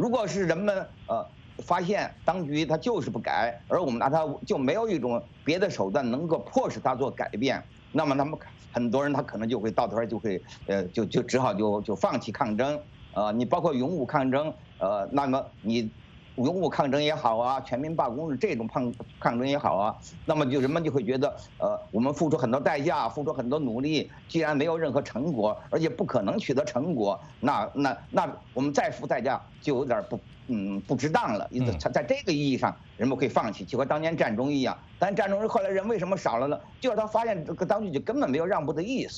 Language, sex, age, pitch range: English, male, 50-69, 120-190 Hz